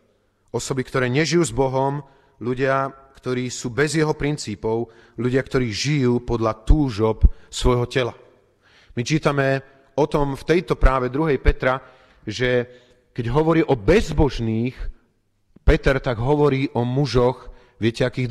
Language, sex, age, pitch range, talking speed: Slovak, male, 40-59, 105-140 Hz, 130 wpm